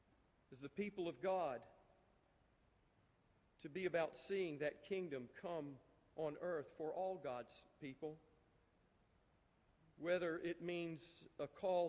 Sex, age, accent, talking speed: male, 50-69, American, 115 wpm